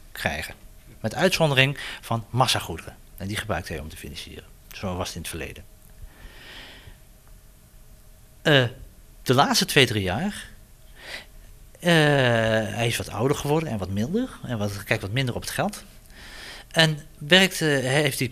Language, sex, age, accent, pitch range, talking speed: Dutch, male, 40-59, Dutch, 110-170 Hz, 140 wpm